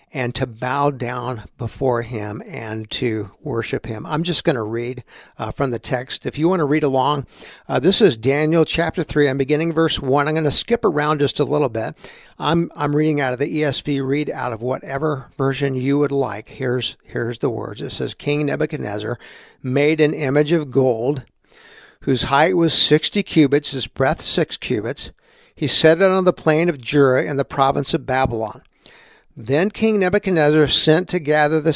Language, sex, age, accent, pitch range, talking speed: English, male, 60-79, American, 130-155 Hz, 190 wpm